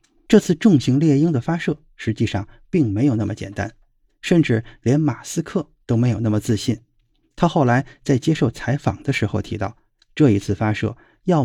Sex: male